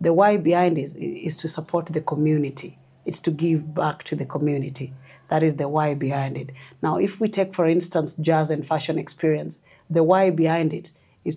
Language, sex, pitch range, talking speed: English, female, 150-175 Hz, 195 wpm